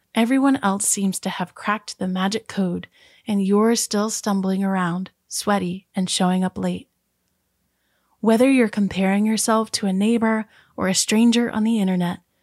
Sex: female